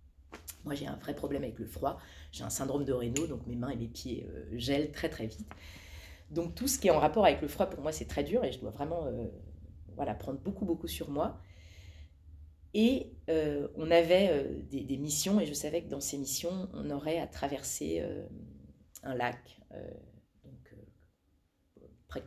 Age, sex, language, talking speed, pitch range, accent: 30-49, female, French, 200 wpm, 95-150 Hz, French